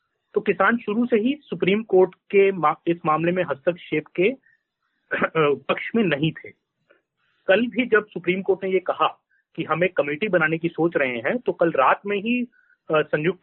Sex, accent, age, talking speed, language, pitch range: male, native, 30-49, 185 wpm, Hindi, 160-205 Hz